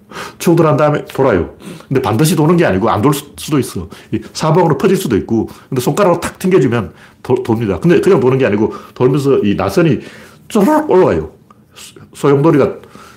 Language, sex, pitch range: Korean, male, 95-150 Hz